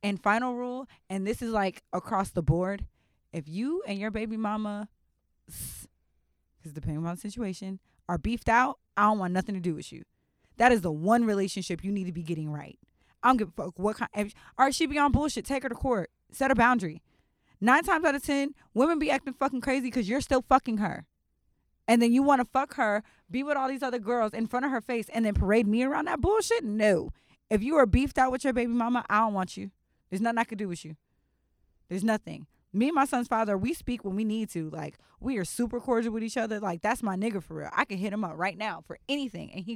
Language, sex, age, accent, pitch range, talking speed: English, female, 20-39, American, 190-250 Hz, 245 wpm